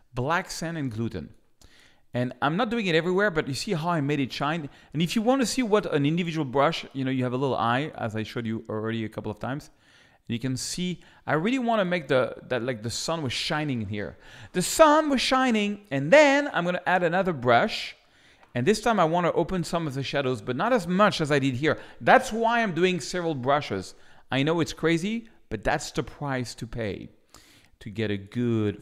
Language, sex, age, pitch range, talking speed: English, male, 40-59, 115-180 Hz, 225 wpm